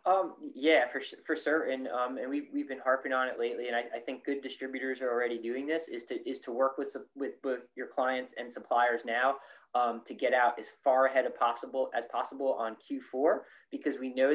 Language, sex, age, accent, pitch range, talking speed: English, male, 20-39, American, 120-165 Hz, 220 wpm